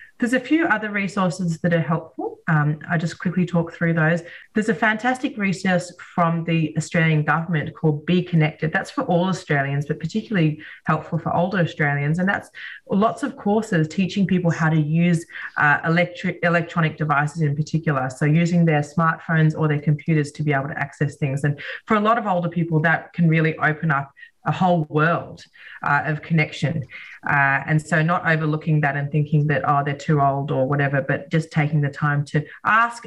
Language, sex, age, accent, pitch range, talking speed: English, female, 30-49, Australian, 150-180 Hz, 190 wpm